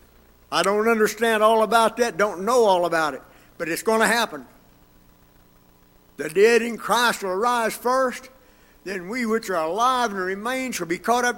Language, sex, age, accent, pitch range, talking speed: English, male, 60-79, American, 155-245 Hz, 180 wpm